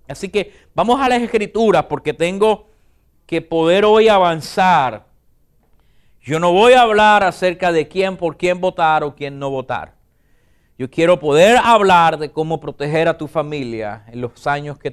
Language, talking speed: English, 165 wpm